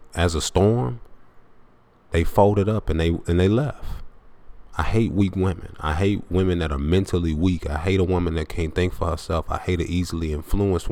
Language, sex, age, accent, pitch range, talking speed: English, male, 20-39, American, 80-95 Hz, 200 wpm